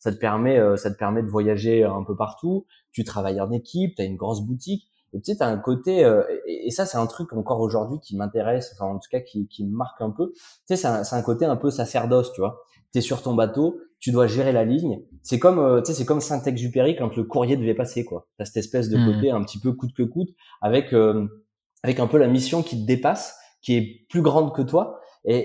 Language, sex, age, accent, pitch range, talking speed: French, male, 20-39, French, 110-140 Hz, 255 wpm